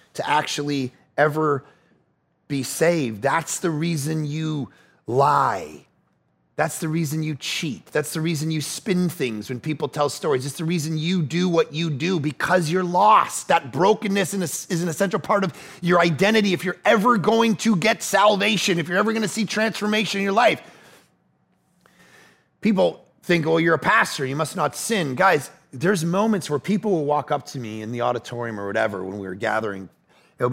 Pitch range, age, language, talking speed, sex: 155-220 Hz, 30-49, English, 180 wpm, male